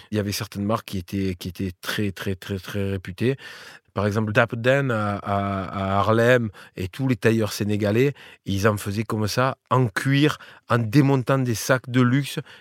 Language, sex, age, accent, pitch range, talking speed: French, male, 30-49, French, 105-130 Hz, 185 wpm